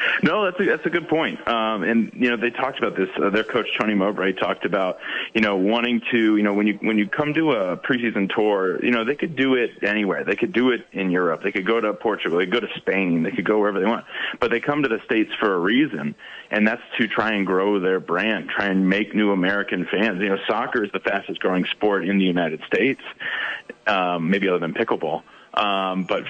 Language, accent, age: English, American, 30-49